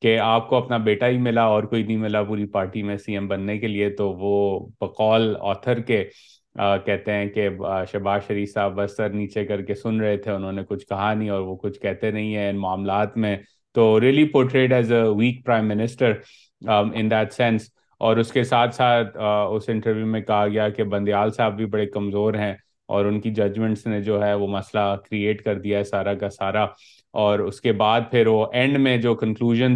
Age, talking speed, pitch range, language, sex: 30-49, 215 wpm, 100-115 Hz, Urdu, male